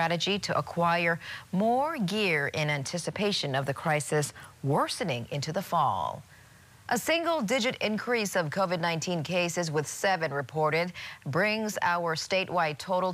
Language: English